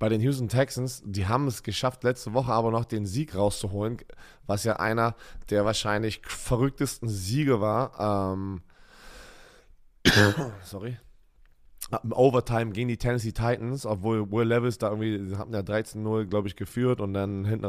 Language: German